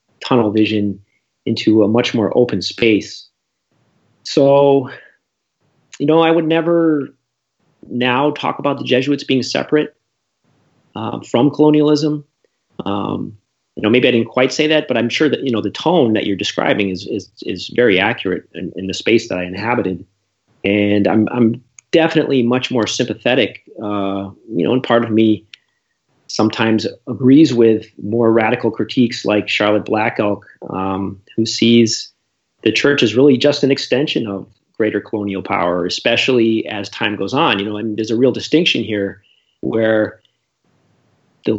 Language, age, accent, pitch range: English, 30-49, American, 105-140 Hz